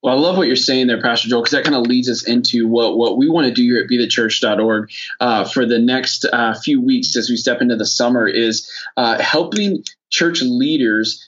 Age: 20-39